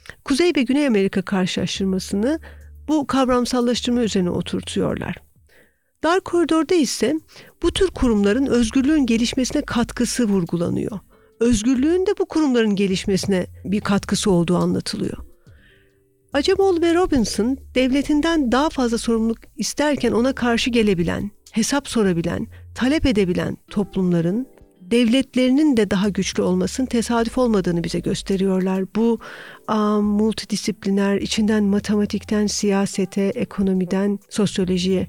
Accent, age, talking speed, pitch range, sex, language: native, 50-69, 105 wpm, 195-275 Hz, female, Turkish